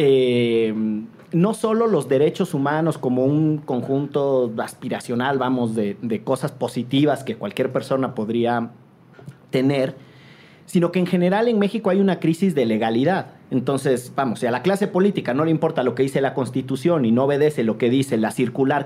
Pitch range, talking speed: 130-175 Hz, 170 wpm